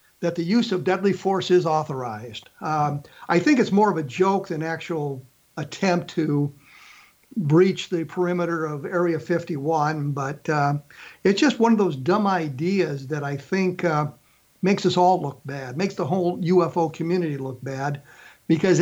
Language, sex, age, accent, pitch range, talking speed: English, male, 50-69, American, 155-195 Hz, 165 wpm